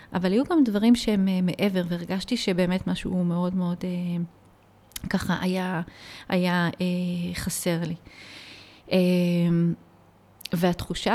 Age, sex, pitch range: 30-49, female, 175-195 Hz